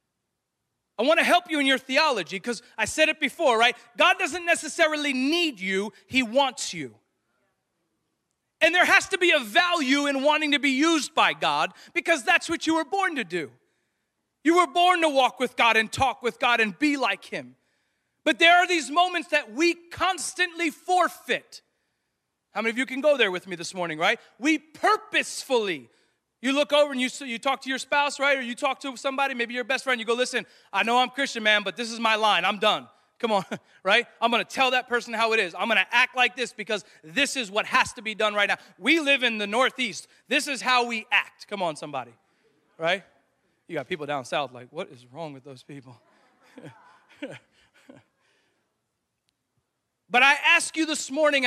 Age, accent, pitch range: 40-59, American, 215-310 Hz